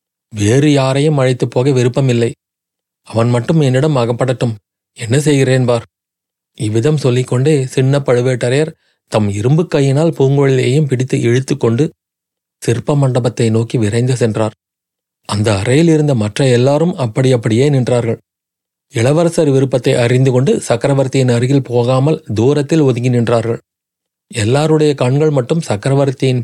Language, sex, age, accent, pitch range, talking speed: Tamil, male, 30-49, native, 120-145 Hz, 115 wpm